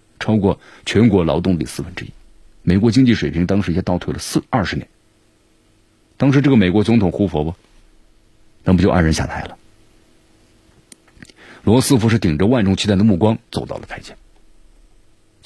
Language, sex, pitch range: Chinese, male, 85-110 Hz